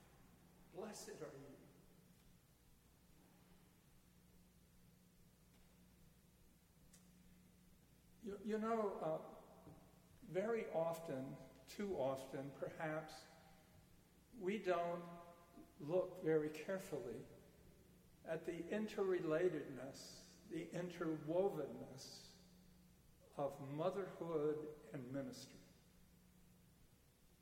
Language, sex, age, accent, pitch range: English, male, 60-79, American, 140-180 Hz